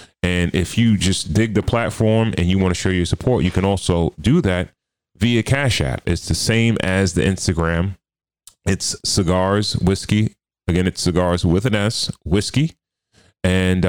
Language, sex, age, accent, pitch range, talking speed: English, male, 30-49, American, 90-110 Hz, 170 wpm